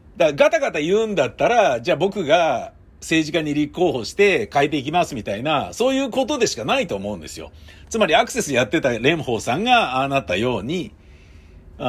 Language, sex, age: Japanese, male, 50-69